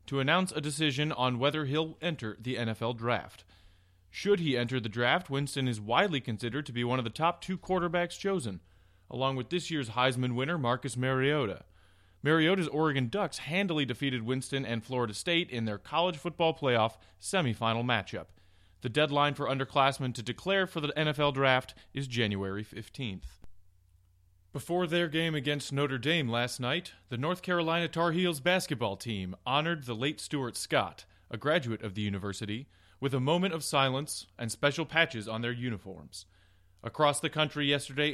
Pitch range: 110-150 Hz